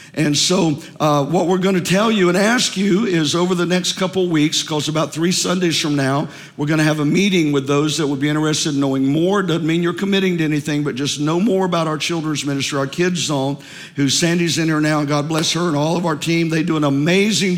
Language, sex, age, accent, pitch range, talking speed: English, male, 50-69, American, 150-180 Hz, 245 wpm